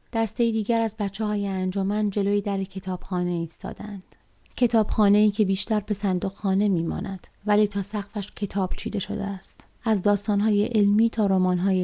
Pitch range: 190-215 Hz